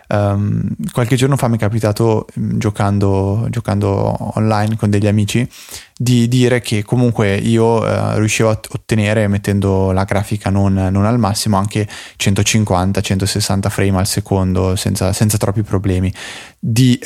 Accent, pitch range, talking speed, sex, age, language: native, 100-115 Hz, 140 wpm, male, 20-39, Italian